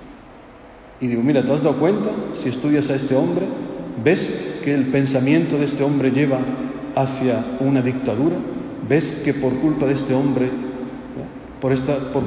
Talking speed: 160 wpm